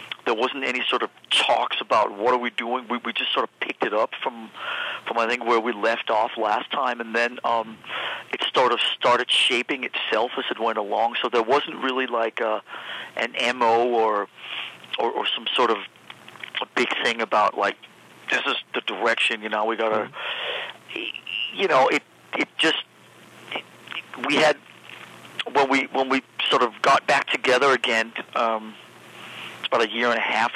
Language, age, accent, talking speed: English, 50-69, American, 185 wpm